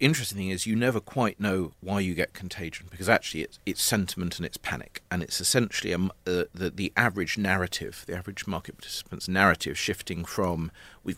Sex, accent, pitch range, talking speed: male, British, 80-95 Hz, 195 wpm